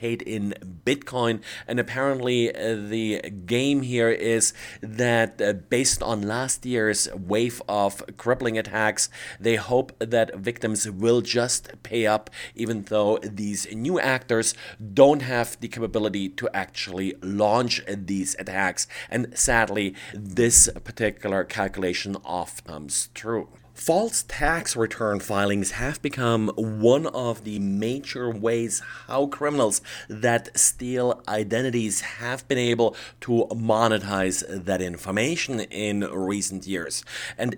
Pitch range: 105-125 Hz